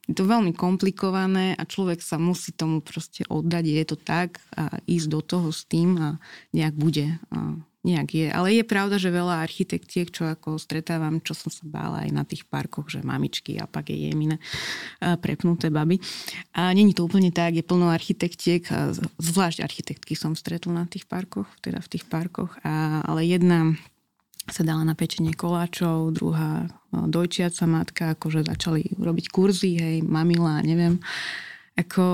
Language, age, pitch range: Slovak, 20-39, 160-185 Hz